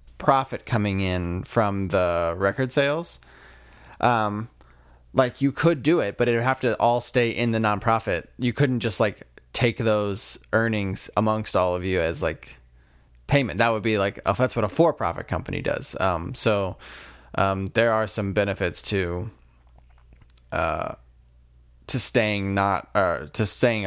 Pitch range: 90-115 Hz